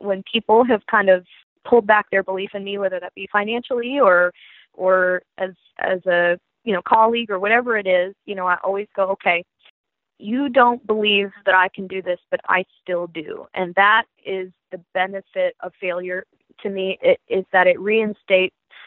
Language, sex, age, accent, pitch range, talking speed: English, female, 20-39, American, 185-210 Hz, 190 wpm